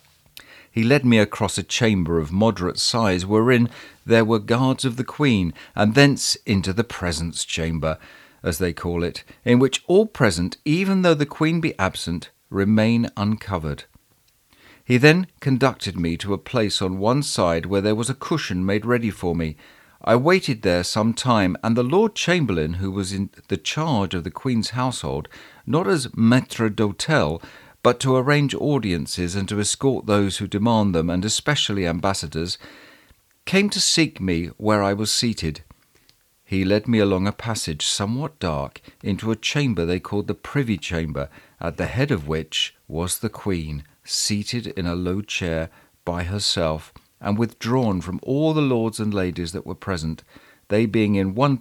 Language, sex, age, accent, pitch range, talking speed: English, male, 50-69, British, 90-125 Hz, 170 wpm